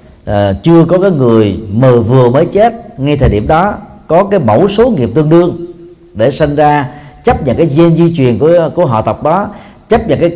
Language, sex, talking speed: Vietnamese, male, 215 wpm